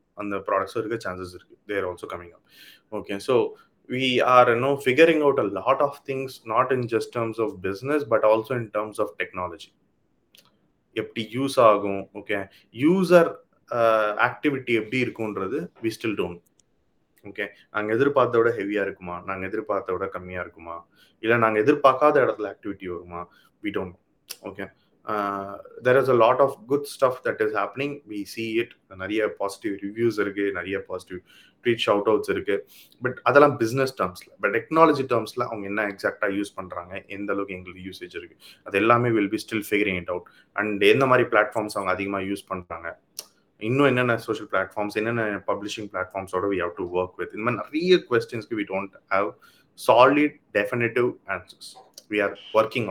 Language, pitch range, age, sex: Tamil, 100-130 Hz, 30-49, male